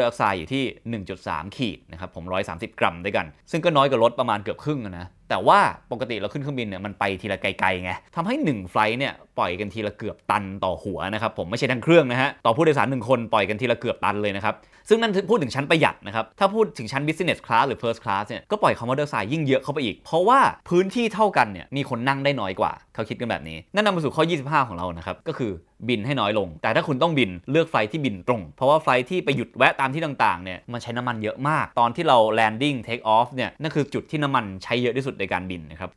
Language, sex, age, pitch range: Thai, male, 20-39, 100-140 Hz